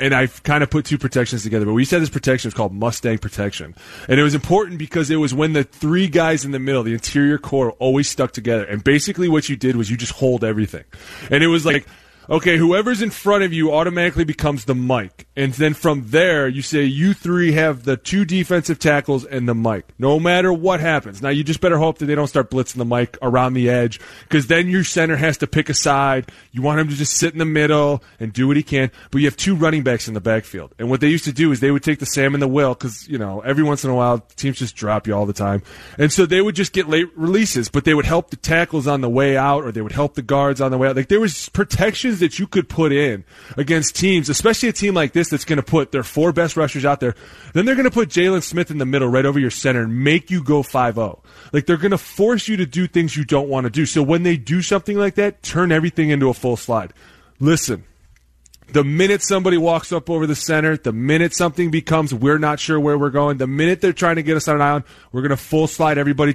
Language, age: English, 20-39